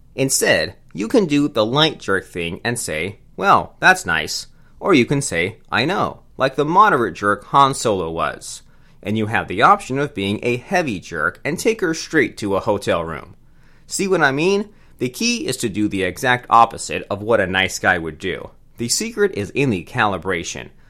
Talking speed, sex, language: 200 wpm, male, English